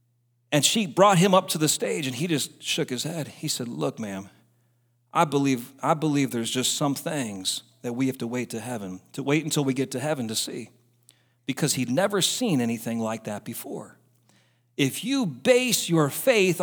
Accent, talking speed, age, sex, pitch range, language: American, 200 wpm, 40-59, male, 130-205 Hz, English